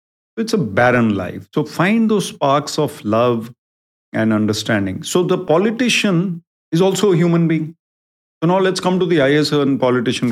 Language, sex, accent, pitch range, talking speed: English, male, Indian, 120-185 Hz, 165 wpm